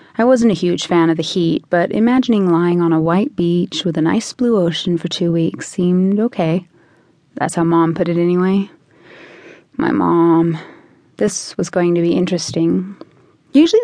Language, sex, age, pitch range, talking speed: English, female, 30-49, 170-230 Hz, 175 wpm